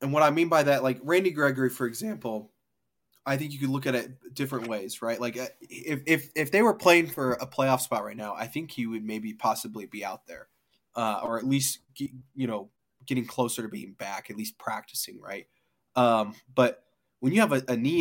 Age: 20-39